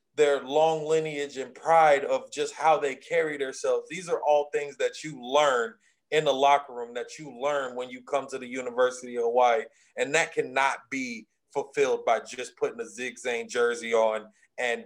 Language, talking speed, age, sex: English, 185 wpm, 30-49, male